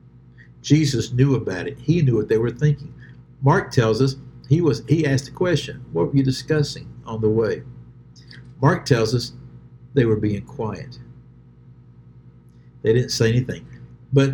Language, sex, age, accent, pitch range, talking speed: English, male, 60-79, American, 115-140 Hz, 160 wpm